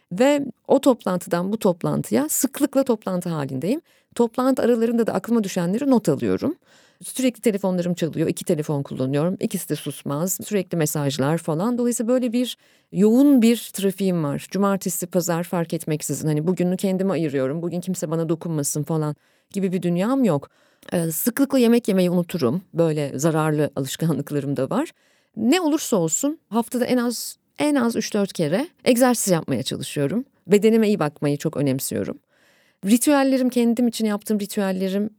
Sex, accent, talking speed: female, native, 145 wpm